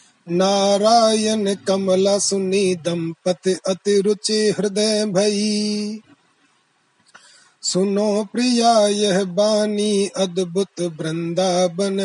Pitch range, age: 180-215 Hz, 30-49